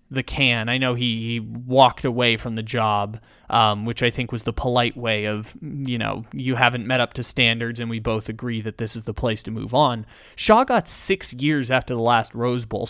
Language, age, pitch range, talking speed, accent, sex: English, 20-39, 115-145 Hz, 230 wpm, American, male